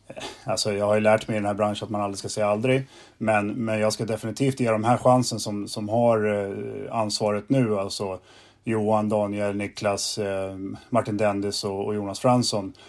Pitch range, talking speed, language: 105-125 Hz, 180 wpm, Swedish